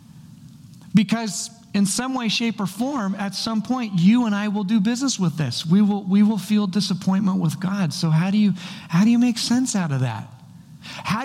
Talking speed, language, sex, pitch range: 210 wpm, English, male, 175-225 Hz